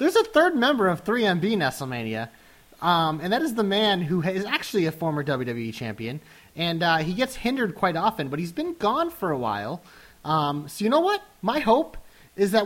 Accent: American